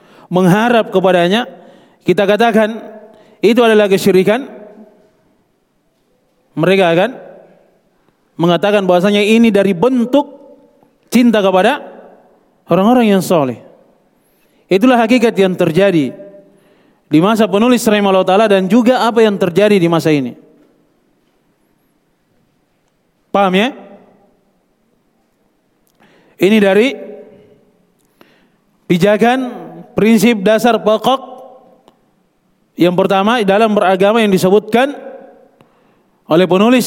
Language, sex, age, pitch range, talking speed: Indonesian, male, 30-49, 190-225 Hz, 85 wpm